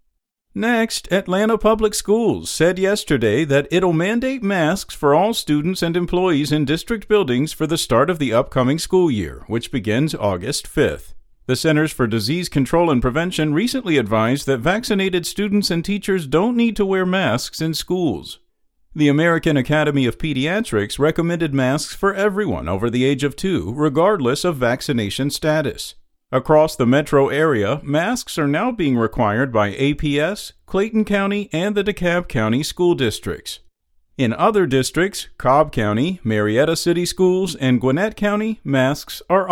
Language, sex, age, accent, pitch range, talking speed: English, male, 50-69, American, 130-195 Hz, 155 wpm